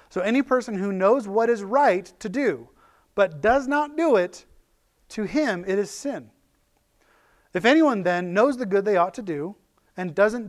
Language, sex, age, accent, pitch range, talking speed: English, male, 30-49, American, 180-250 Hz, 185 wpm